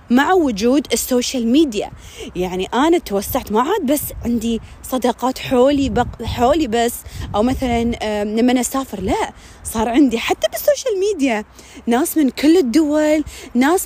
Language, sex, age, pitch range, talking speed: Arabic, female, 20-39, 250-355 Hz, 145 wpm